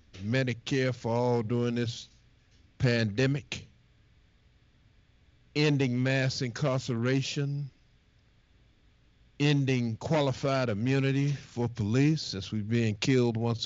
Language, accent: English, American